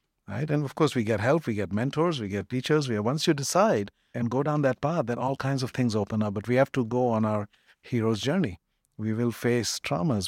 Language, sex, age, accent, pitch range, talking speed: English, male, 50-69, Indian, 105-130 Hz, 245 wpm